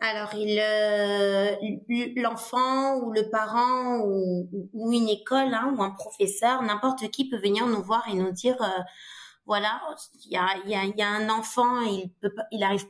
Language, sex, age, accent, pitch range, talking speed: French, female, 20-39, French, 195-235 Hz, 175 wpm